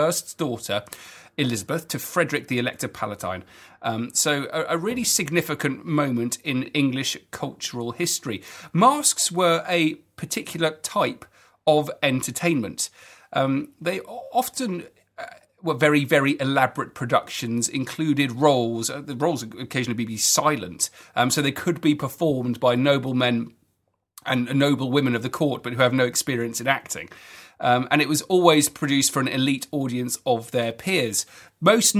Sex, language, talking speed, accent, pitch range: male, English, 145 wpm, British, 120-155 Hz